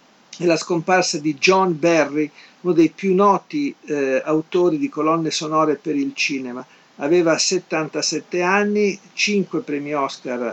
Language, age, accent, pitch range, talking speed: Italian, 50-69, native, 140-175 Hz, 135 wpm